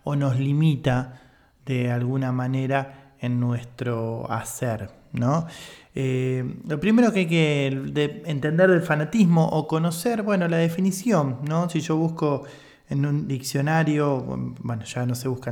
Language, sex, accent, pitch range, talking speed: Spanish, male, Argentinian, 135-180 Hz, 140 wpm